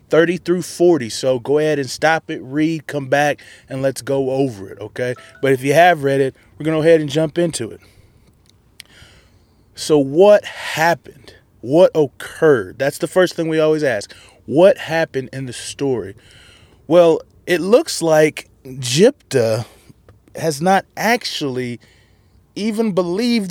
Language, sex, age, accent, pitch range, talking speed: English, male, 20-39, American, 120-175 Hz, 155 wpm